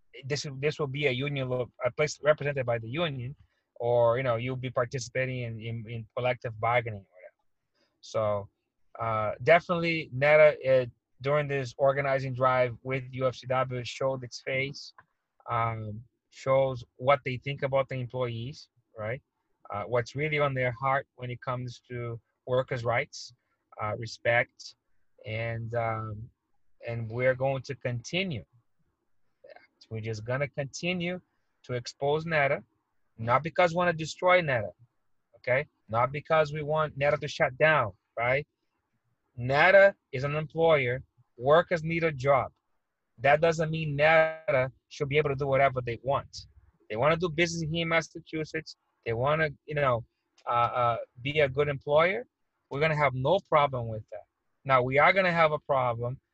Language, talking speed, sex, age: English, 155 wpm, male, 20-39